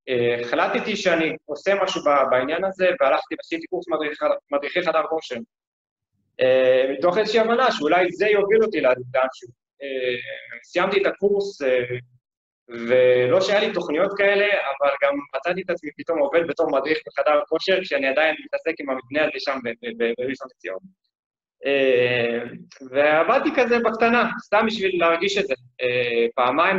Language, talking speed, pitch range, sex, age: Hebrew, 130 wpm, 140-195 Hz, male, 20-39